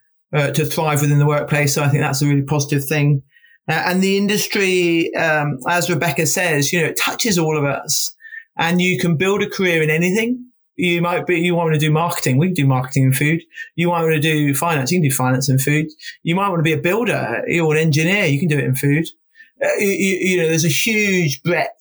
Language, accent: English, British